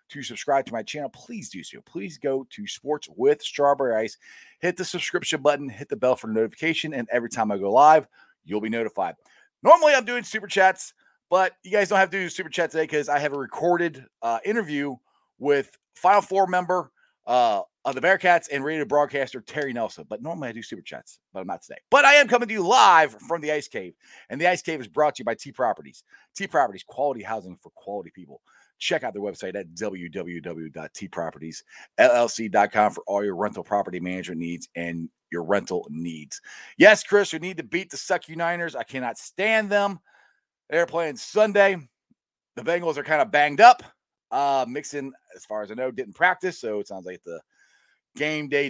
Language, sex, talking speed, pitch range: English, male, 200 wpm, 120-190 Hz